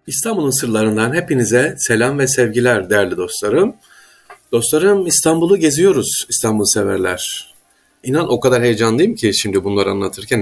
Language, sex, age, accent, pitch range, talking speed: Turkish, male, 50-69, native, 100-160 Hz, 120 wpm